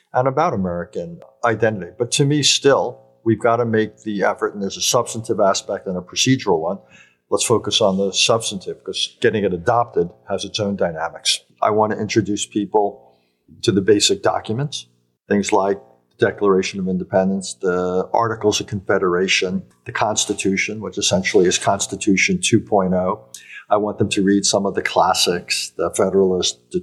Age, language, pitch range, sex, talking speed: 50-69, English, 90-110 Hz, male, 165 wpm